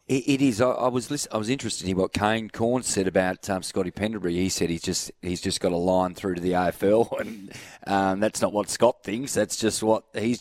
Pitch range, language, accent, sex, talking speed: 90-110 Hz, English, Australian, male, 235 wpm